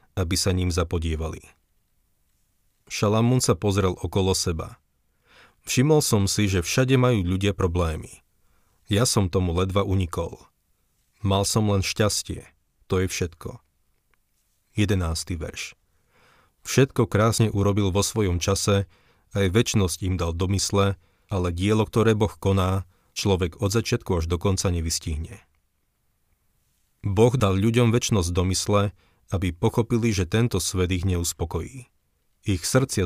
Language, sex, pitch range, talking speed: Slovak, male, 90-105 Hz, 125 wpm